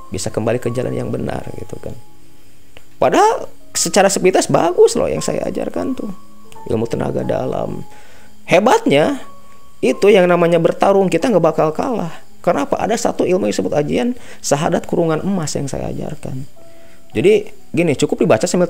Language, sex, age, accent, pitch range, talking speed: Indonesian, male, 30-49, native, 155-255 Hz, 150 wpm